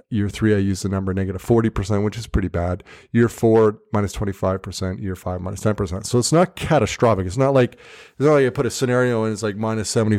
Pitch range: 100-120 Hz